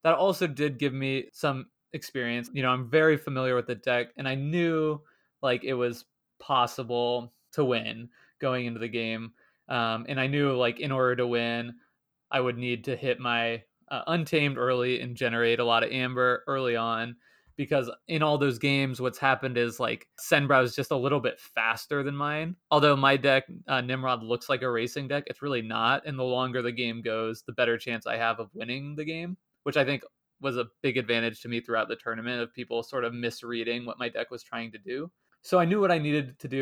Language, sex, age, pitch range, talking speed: English, male, 20-39, 120-140 Hz, 215 wpm